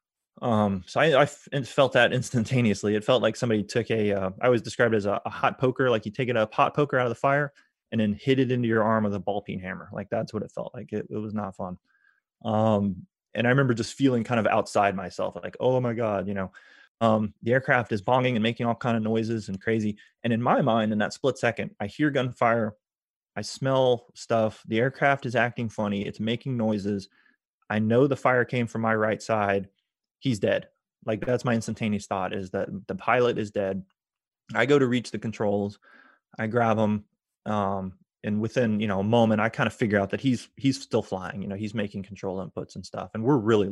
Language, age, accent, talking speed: English, 20-39, American, 225 wpm